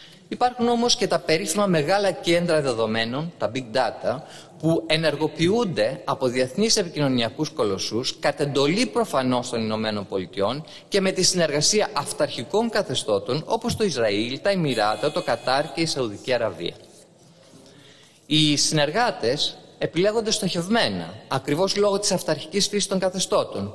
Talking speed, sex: 125 wpm, male